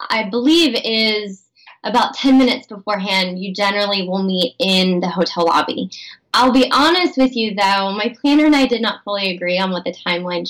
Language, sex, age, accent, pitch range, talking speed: English, female, 20-39, American, 190-250 Hz, 190 wpm